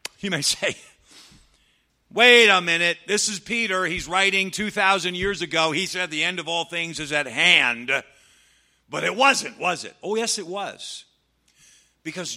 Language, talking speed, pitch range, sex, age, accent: English, 165 wpm, 120-175 Hz, male, 50-69, American